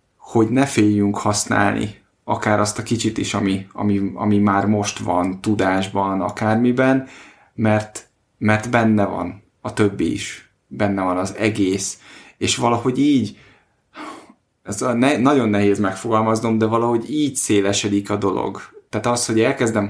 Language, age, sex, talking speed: Hungarian, 20-39, male, 135 wpm